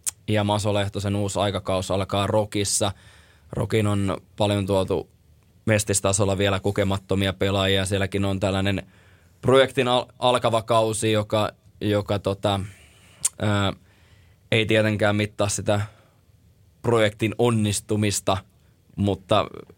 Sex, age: male, 20-39